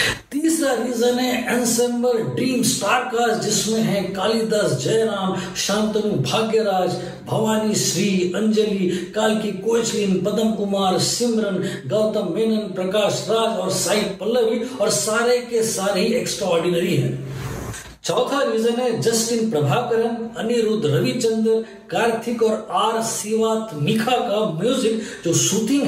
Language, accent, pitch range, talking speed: Hindi, native, 190-230 Hz, 105 wpm